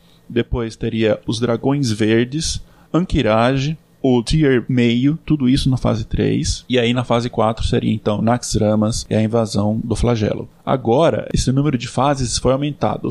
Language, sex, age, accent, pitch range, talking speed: Portuguese, male, 20-39, Brazilian, 110-125 Hz, 155 wpm